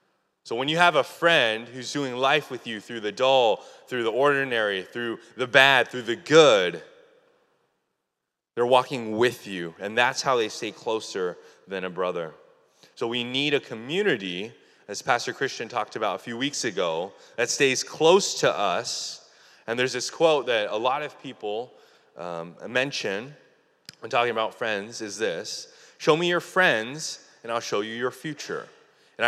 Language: English